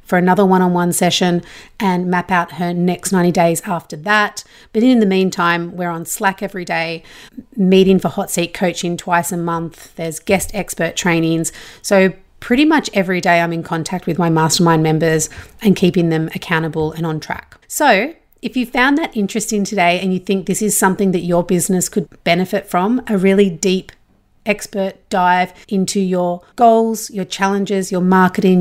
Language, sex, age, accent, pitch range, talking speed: English, female, 30-49, Australian, 175-205 Hz, 175 wpm